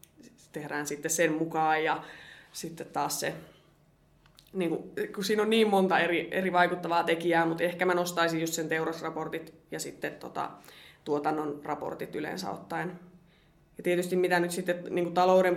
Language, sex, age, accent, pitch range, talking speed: Finnish, female, 20-39, native, 160-175 Hz, 150 wpm